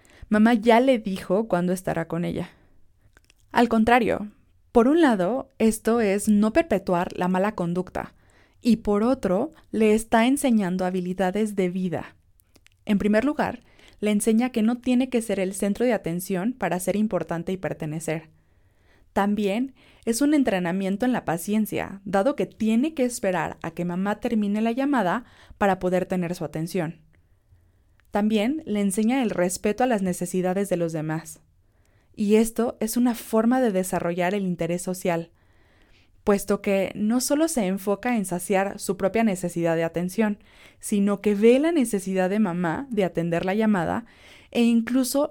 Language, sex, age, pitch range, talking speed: Spanish, female, 20-39, 170-225 Hz, 155 wpm